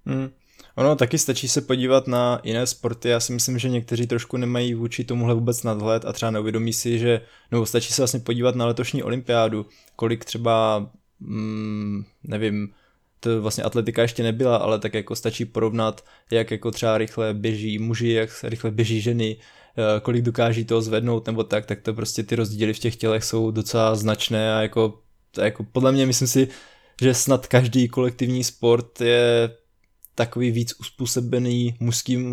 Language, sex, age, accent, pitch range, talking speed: Czech, male, 20-39, native, 110-125 Hz, 170 wpm